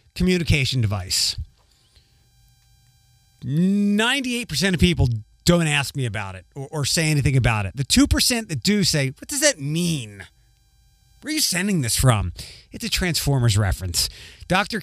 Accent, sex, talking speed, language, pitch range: American, male, 155 wpm, English, 125-185 Hz